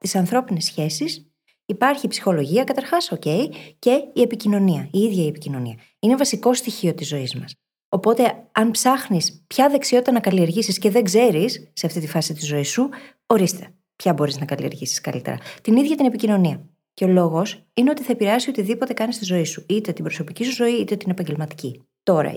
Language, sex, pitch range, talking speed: Greek, female, 160-230 Hz, 185 wpm